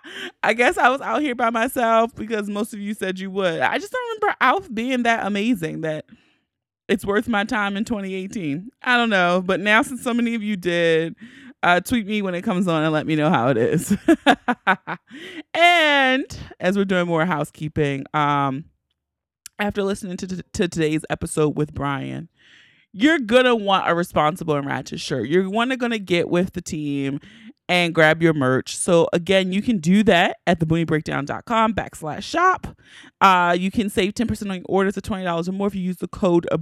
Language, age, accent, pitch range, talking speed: English, 30-49, American, 170-225 Hz, 195 wpm